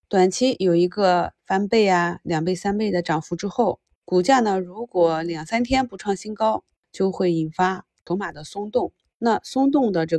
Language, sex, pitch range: Chinese, female, 170-215 Hz